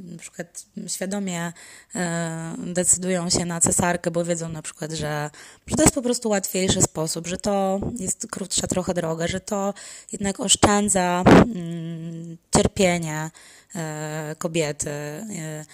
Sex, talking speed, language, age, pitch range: female, 115 wpm, Polish, 20-39, 170-200 Hz